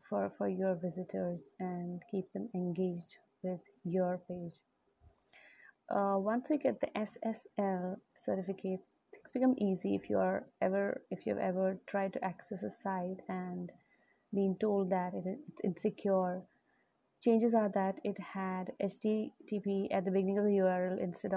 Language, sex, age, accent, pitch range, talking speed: Hindi, female, 30-49, native, 180-205 Hz, 150 wpm